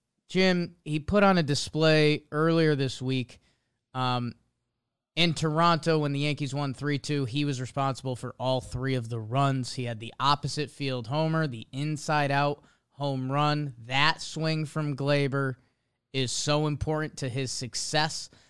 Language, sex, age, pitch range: English, male, 20-39, 130-165 Hz